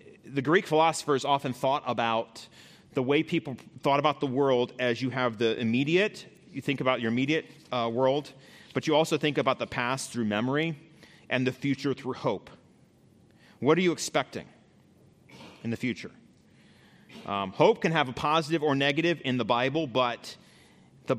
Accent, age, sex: American, 30-49, male